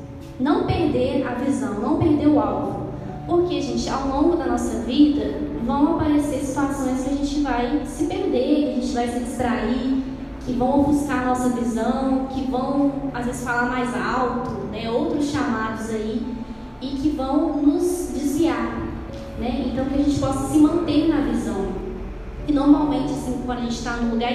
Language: Portuguese